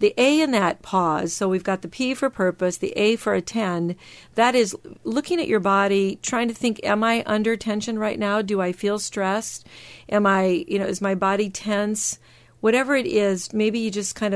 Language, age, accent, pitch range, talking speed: English, 50-69, American, 175-215 Hz, 210 wpm